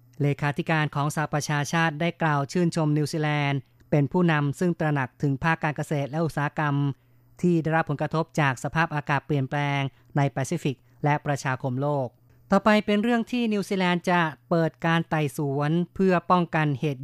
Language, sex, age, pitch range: Thai, female, 20-39, 140-160 Hz